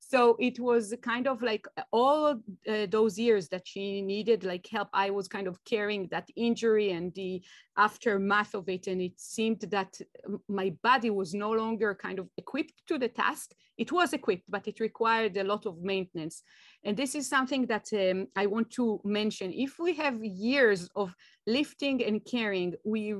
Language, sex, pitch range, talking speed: English, female, 195-235 Hz, 185 wpm